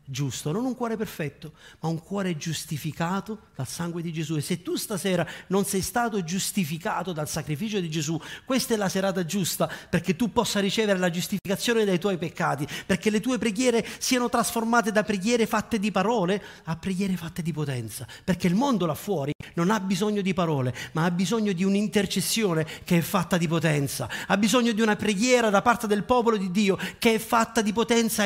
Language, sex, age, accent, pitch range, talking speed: Italian, male, 40-59, native, 130-200 Hz, 195 wpm